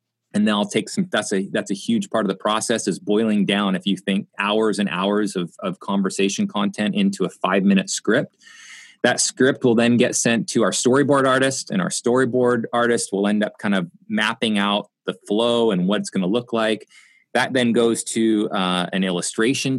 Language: English